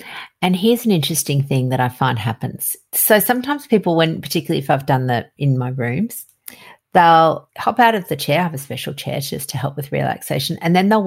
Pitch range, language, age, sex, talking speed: 145-195 Hz, English, 50-69, female, 215 wpm